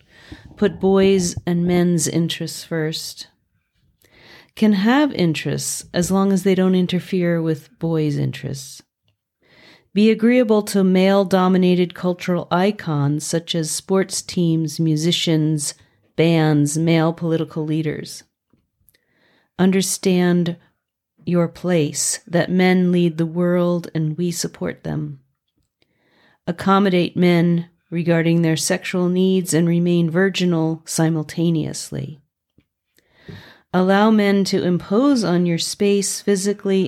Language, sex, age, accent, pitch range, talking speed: English, female, 40-59, American, 160-190 Hz, 105 wpm